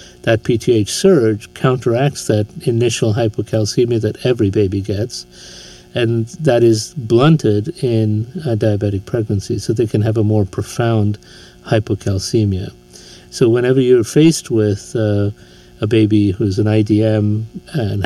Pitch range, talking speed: 100-120 Hz, 130 wpm